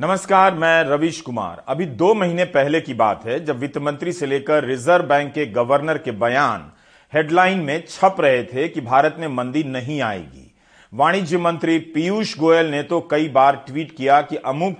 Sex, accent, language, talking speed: male, native, Hindi, 185 wpm